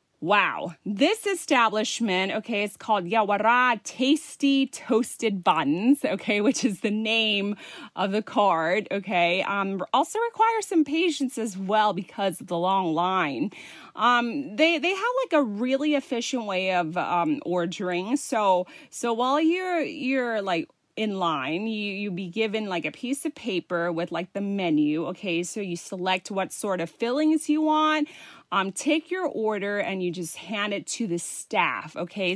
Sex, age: female, 30-49